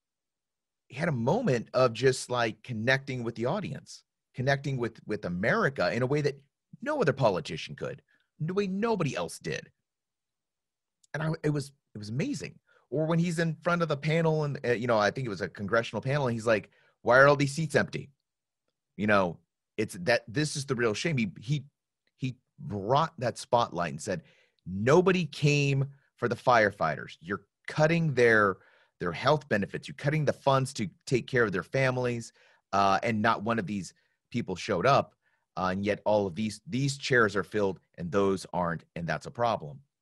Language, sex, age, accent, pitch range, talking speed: English, male, 30-49, American, 120-155 Hz, 190 wpm